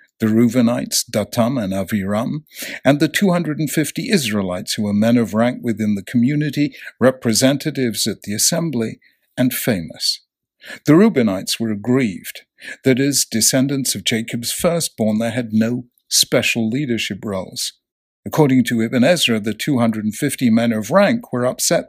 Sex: male